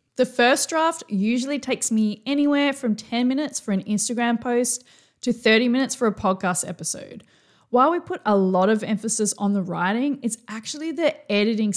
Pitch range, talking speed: 195-265 Hz, 180 wpm